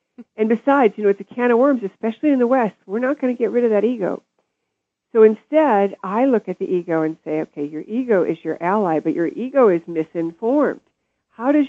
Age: 50-69